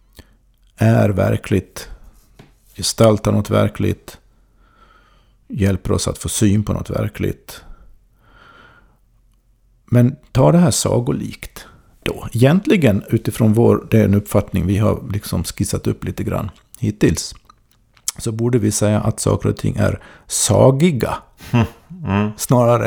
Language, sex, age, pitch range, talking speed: Swedish, male, 50-69, 105-130 Hz, 110 wpm